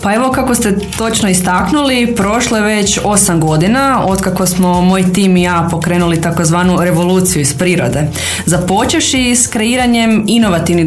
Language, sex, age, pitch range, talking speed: Croatian, female, 20-39, 175-225 Hz, 145 wpm